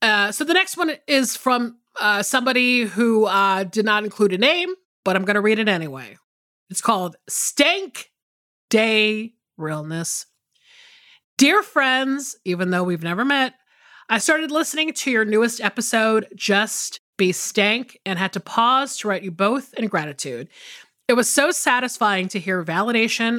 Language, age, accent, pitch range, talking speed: English, 30-49, American, 185-245 Hz, 160 wpm